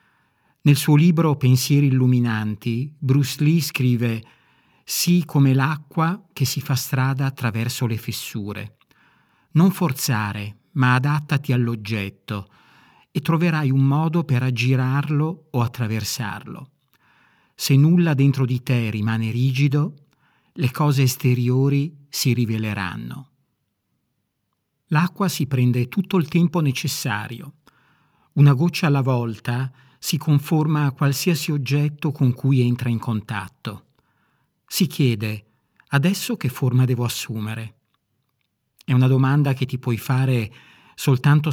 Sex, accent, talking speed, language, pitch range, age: male, native, 115 wpm, Italian, 120-150 Hz, 50-69